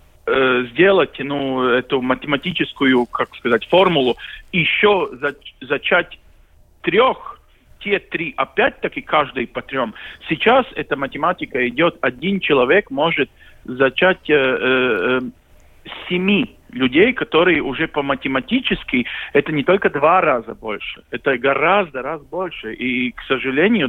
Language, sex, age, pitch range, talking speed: Russian, male, 50-69, 130-195 Hz, 110 wpm